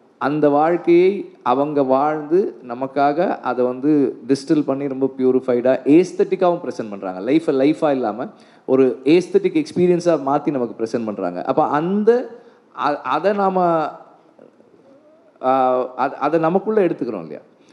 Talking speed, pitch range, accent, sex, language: 110 wpm, 125-185 Hz, native, male, Tamil